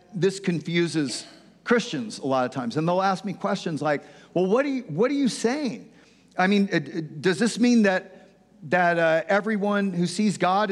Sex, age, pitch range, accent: male, 50-69, 165-210 Hz, American